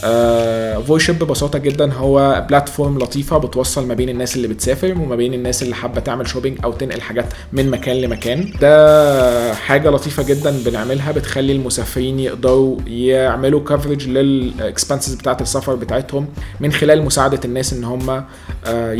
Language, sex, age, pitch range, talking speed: Arabic, male, 20-39, 125-140 Hz, 150 wpm